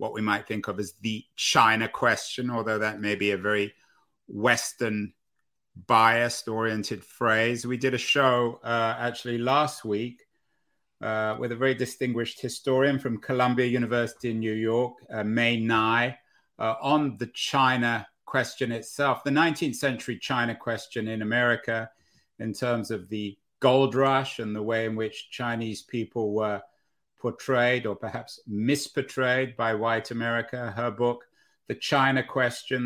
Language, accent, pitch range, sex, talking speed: English, British, 110-130 Hz, male, 145 wpm